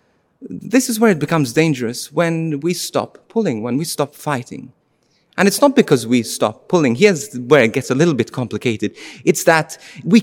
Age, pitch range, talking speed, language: 30-49, 130-185 Hz, 190 wpm, English